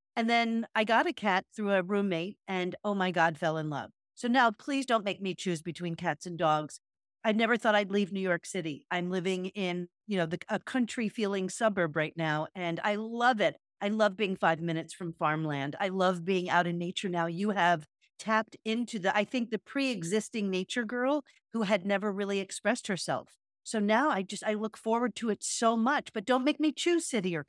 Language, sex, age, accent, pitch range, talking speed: English, female, 50-69, American, 180-230 Hz, 215 wpm